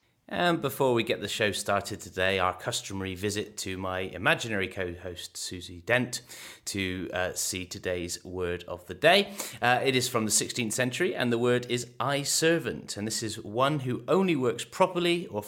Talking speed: 180 wpm